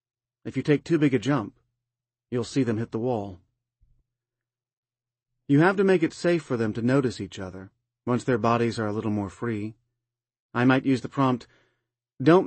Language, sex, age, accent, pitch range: Chinese, male, 40-59, American, 120-135 Hz